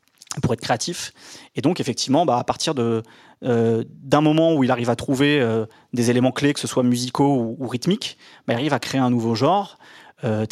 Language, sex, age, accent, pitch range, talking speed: French, male, 20-39, French, 115-140 Hz, 215 wpm